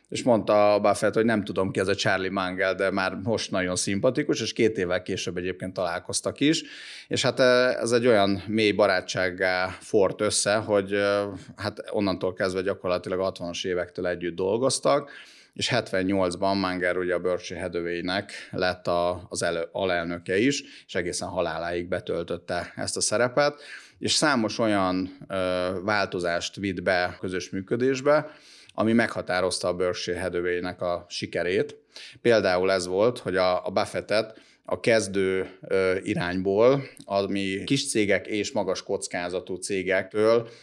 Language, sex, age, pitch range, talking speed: Hungarian, male, 30-49, 90-105 Hz, 135 wpm